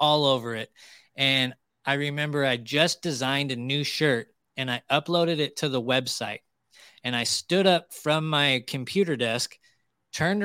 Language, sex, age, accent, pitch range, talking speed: English, male, 20-39, American, 130-155 Hz, 160 wpm